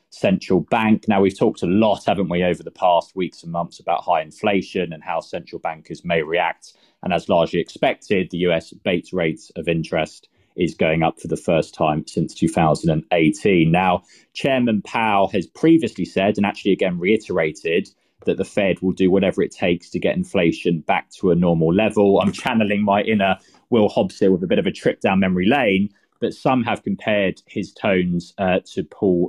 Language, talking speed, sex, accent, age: English, 195 wpm, male, British, 20-39